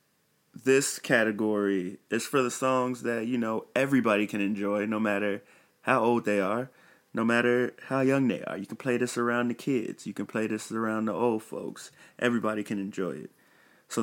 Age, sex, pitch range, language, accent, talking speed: 20-39, male, 100-125 Hz, English, American, 190 wpm